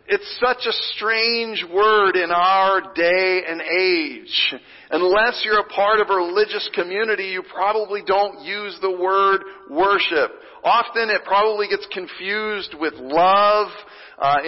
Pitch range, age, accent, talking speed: 190-250 Hz, 40-59, American, 135 wpm